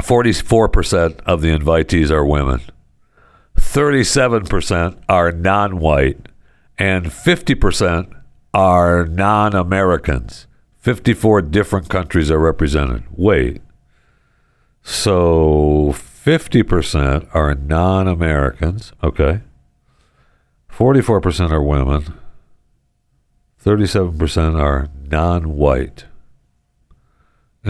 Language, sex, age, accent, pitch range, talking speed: English, male, 60-79, American, 75-95 Hz, 65 wpm